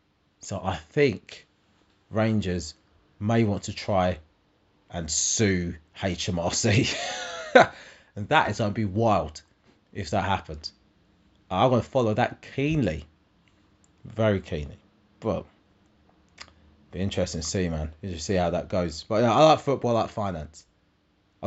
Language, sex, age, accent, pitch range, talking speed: English, male, 30-49, British, 85-110 Hz, 135 wpm